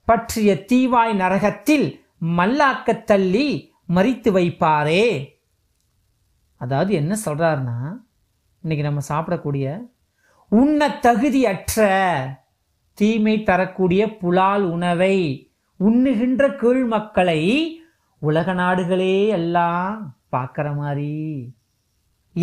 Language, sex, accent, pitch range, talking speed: Tamil, male, native, 155-225 Hz, 55 wpm